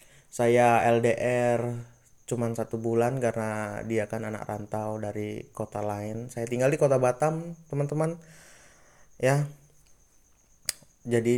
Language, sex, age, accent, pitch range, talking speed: Indonesian, male, 20-39, native, 110-125 Hz, 110 wpm